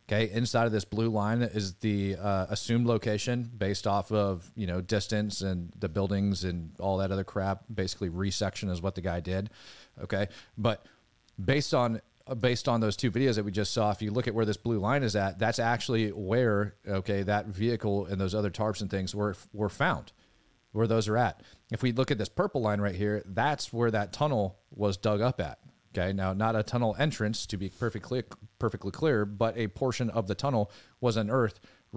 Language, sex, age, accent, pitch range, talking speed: English, male, 30-49, American, 100-125 Hz, 205 wpm